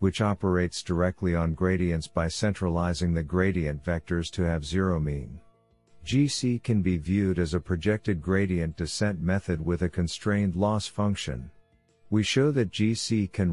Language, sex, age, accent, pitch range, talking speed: English, male, 50-69, American, 85-100 Hz, 150 wpm